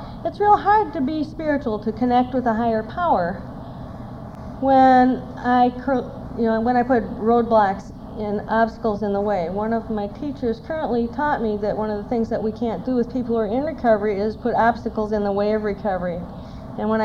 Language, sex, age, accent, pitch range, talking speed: English, female, 40-59, American, 200-245 Hz, 200 wpm